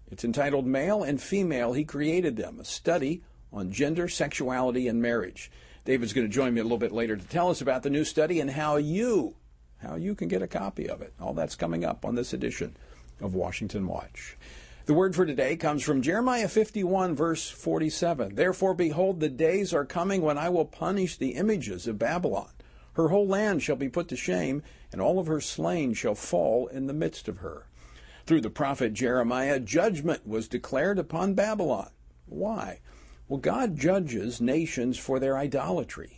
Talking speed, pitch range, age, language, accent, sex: 185 wpm, 110-170 Hz, 50-69, English, American, male